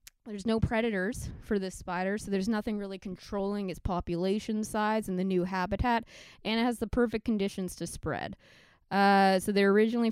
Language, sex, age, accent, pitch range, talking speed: English, female, 20-39, American, 190-230 Hz, 180 wpm